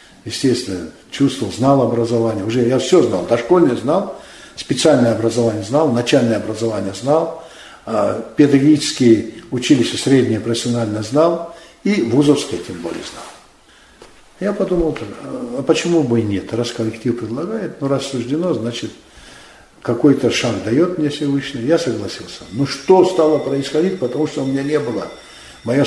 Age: 60-79